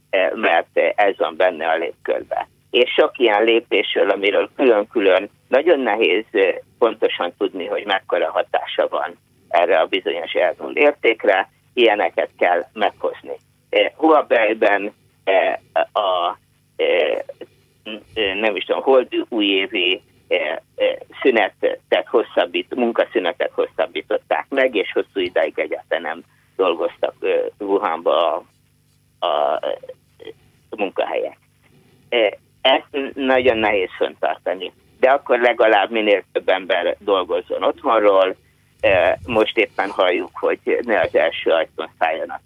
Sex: male